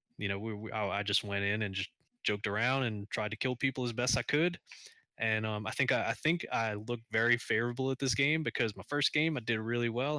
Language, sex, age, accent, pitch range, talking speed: English, male, 20-39, American, 105-135 Hz, 255 wpm